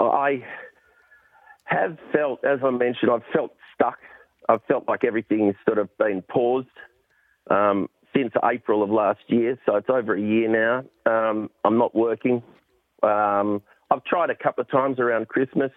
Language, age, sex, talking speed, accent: English, 40-59, male, 160 wpm, Australian